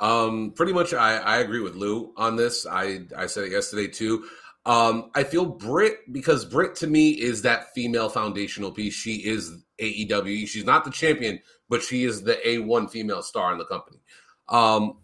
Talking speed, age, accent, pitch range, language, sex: 190 wpm, 30-49, American, 115-150 Hz, English, male